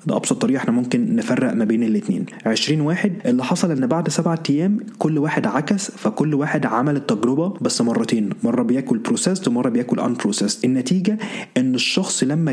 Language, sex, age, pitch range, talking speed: Arabic, male, 20-39, 130-215 Hz, 170 wpm